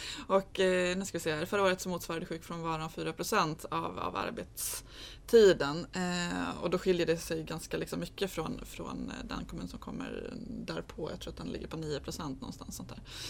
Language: Swedish